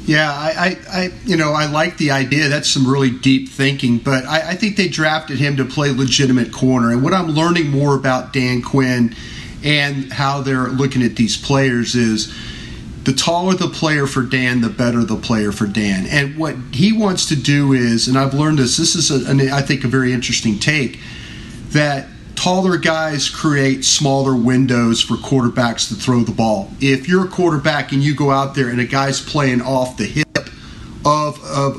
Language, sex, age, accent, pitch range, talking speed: English, male, 40-59, American, 125-150 Hz, 195 wpm